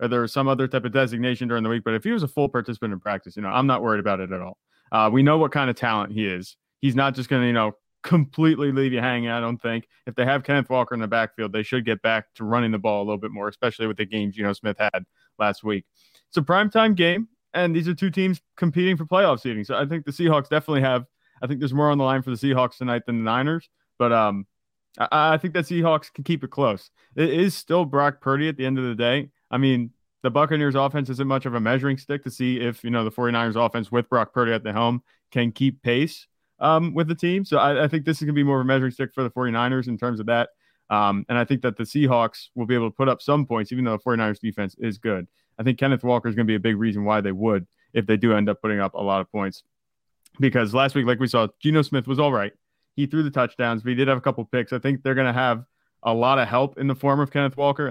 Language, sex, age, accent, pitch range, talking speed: English, male, 30-49, American, 115-140 Hz, 285 wpm